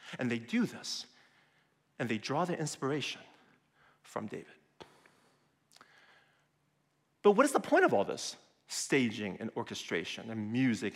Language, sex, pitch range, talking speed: English, male, 125-180 Hz, 130 wpm